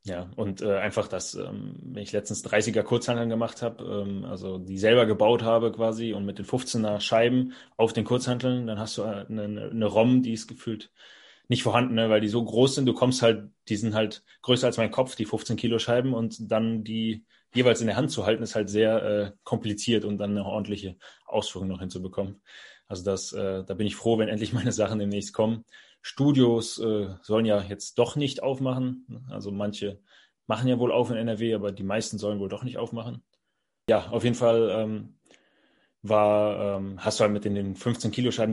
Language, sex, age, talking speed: German, male, 20-39, 200 wpm